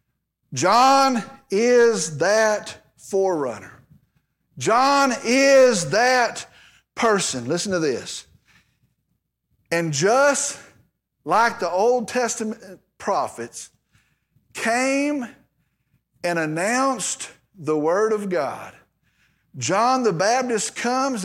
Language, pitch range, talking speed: English, 195-270 Hz, 80 wpm